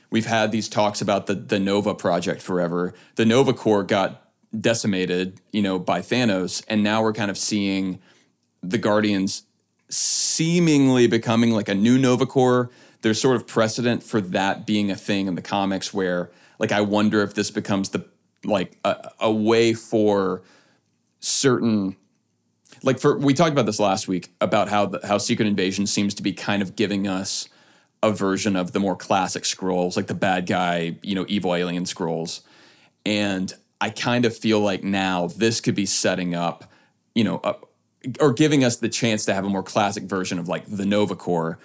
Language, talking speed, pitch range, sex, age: English, 185 wpm, 95-110 Hz, male, 30-49